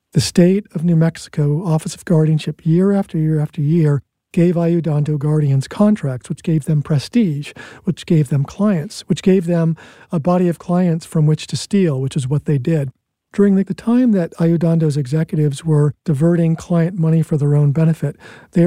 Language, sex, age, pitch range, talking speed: English, male, 50-69, 150-175 Hz, 180 wpm